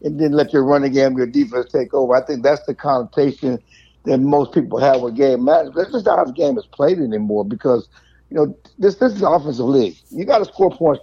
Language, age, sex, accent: English, 60-79, male, American